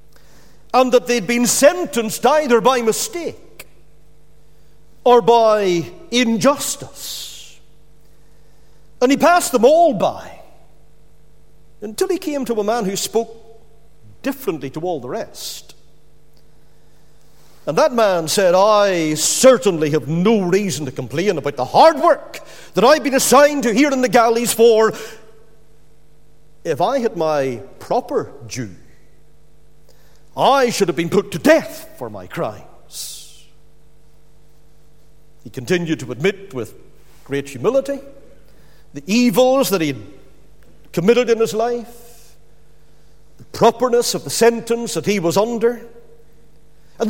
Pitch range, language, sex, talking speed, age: 175-270 Hz, English, male, 125 wpm, 50-69